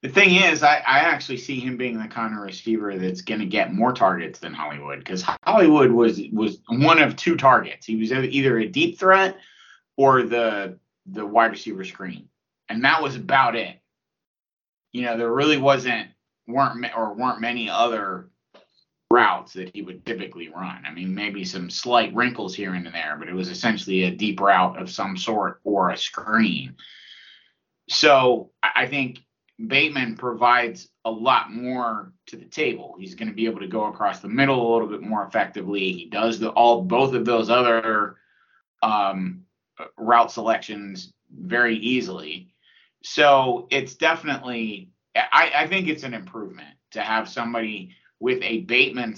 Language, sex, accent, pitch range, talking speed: English, male, American, 100-135 Hz, 165 wpm